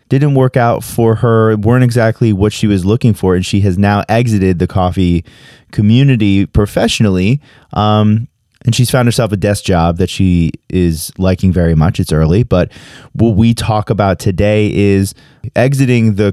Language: English